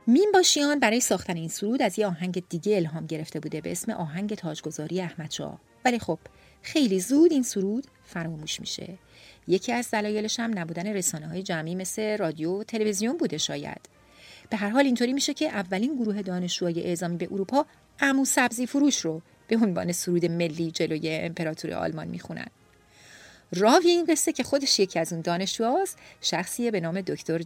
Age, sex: 40-59, female